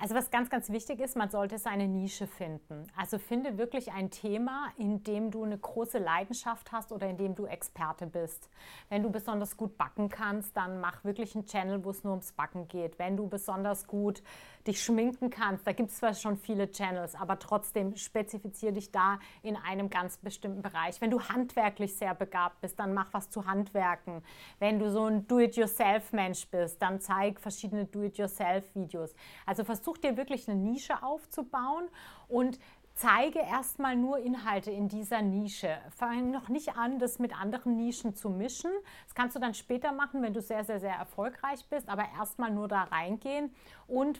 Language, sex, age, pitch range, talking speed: German, female, 30-49, 195-235 Hz, 185 wpm